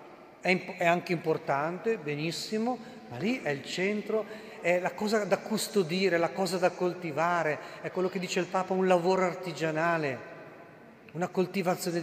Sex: male